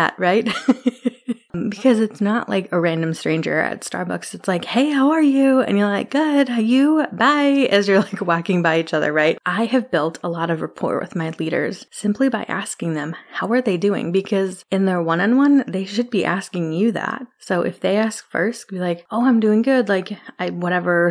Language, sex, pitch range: English, female, 170-220 Hz